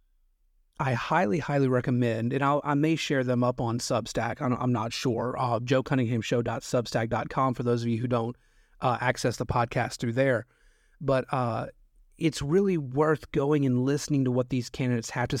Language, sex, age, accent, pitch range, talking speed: English, male, 30-49, American, 120-140 Hz, 175 wpm